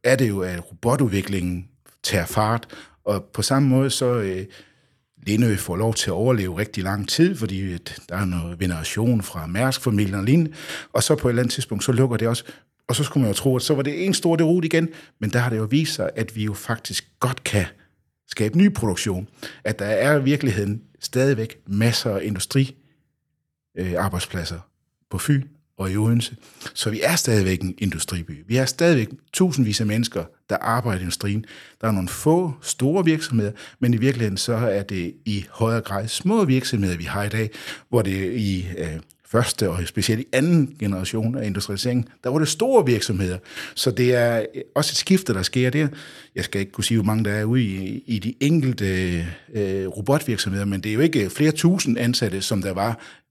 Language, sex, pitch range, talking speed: Danish, male, 100-130 Hz, 195 wpm